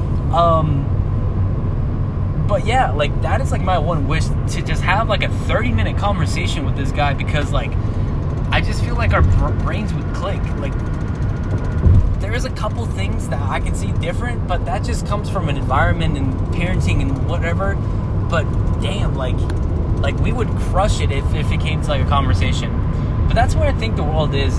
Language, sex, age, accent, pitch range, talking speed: English, male, 20-39, American, 85-105 Hz, 190 wpm